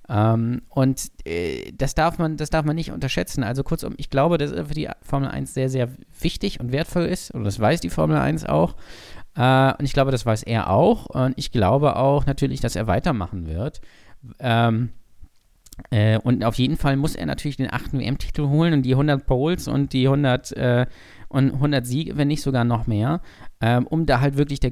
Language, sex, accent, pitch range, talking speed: German, male, German, 120-145 Hz, 200 wpm